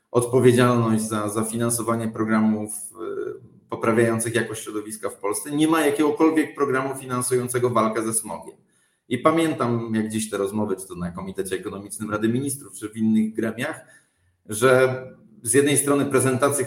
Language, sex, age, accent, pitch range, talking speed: Polish, male, 40-59, native, 110-135 Hz, 145 wpm